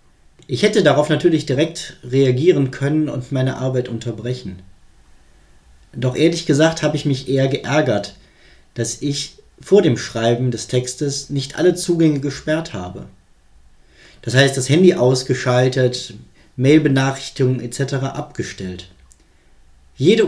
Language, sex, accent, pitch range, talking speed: German, male, German, 95-155 Hz, 120 wpm